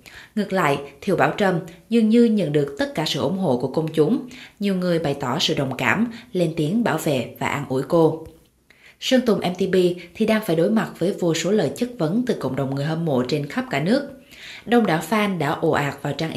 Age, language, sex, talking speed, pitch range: 20-39, Vietnamese, female, 235 wpm, 150-205 Hz